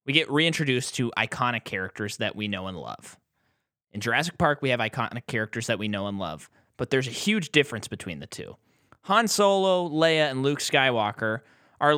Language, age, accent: English, 20-39, American